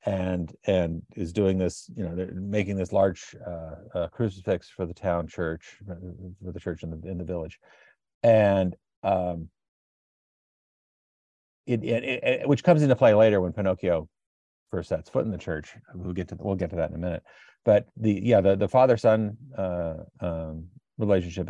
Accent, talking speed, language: American, 180 wpm, English